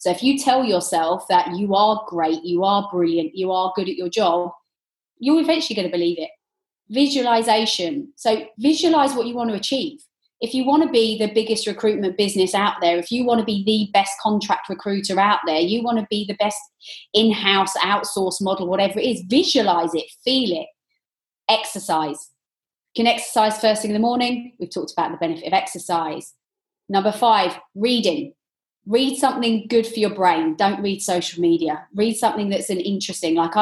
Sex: female